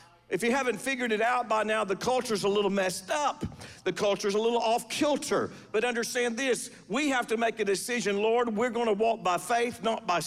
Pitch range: 205-245 Hz